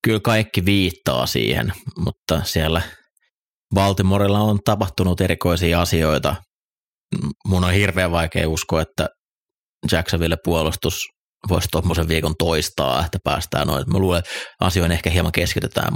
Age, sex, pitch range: 30-49, male, 80-95 Hz